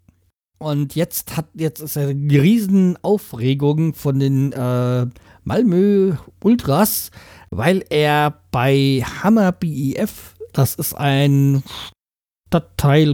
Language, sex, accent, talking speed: German, male, German, 100 wpm